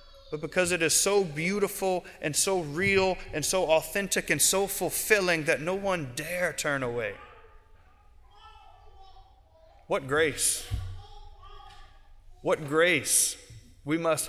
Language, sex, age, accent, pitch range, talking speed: English, male, 30-49, American, 130-185 Hz, 115 wpm